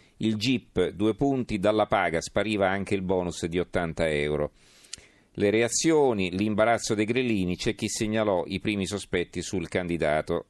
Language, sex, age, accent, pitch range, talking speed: Italian, male, 40-59, native, 85-105 Hz, 150 wpm